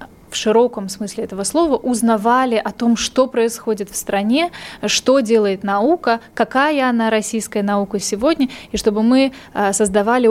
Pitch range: 205-245 Hz